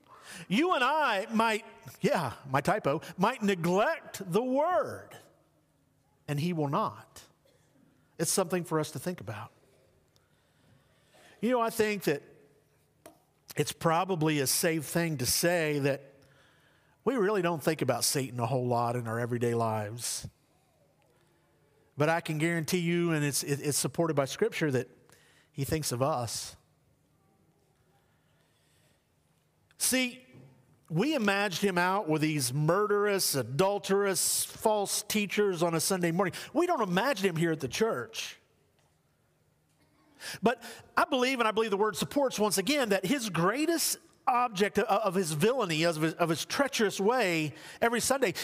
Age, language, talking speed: 50-69, English, 140 wpm